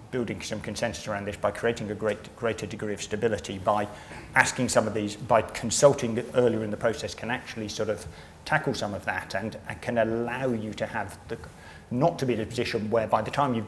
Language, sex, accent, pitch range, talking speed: English, male, British, 105-115 Hz, 225 wpm